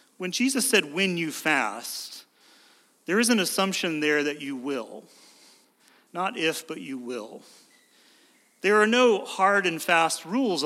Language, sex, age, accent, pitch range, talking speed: English, male, 40-59, American, 135-195 Hz, 145 wpm